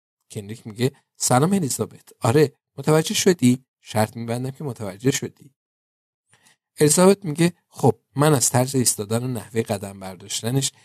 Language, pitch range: Persian, 110-140 Hz